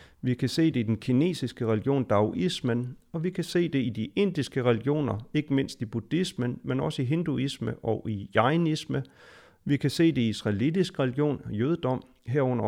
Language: Danish